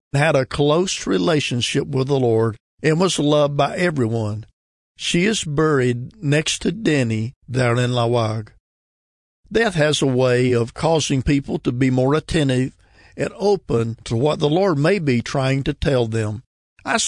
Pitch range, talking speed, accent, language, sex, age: 120-155 Hz, 160 wpm, American, English, male, 50-69